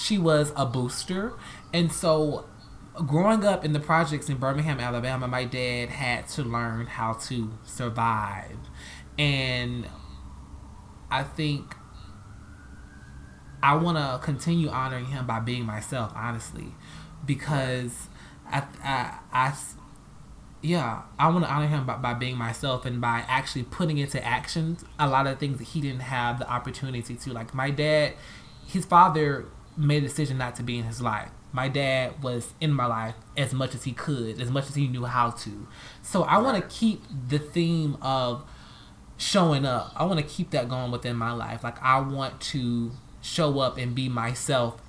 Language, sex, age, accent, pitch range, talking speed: English, male, 20-39, American, 120-145 Hz, 170 wpm